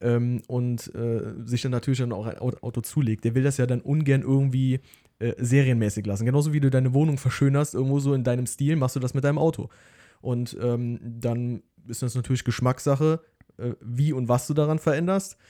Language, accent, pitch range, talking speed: German, German, 120-140 Hz, 200 wpm